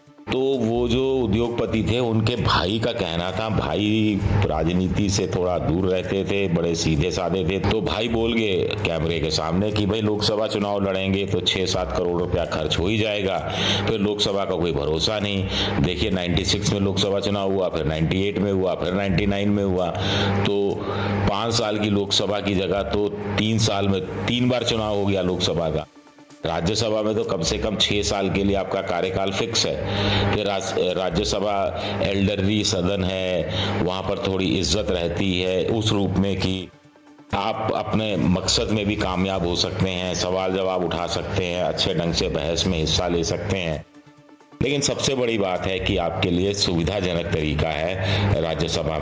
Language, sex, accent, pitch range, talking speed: Hindi, male, native, 90-105 Hz, 175 wpm